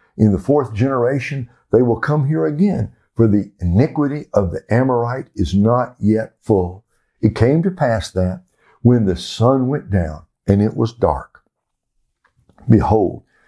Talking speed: 150 wpm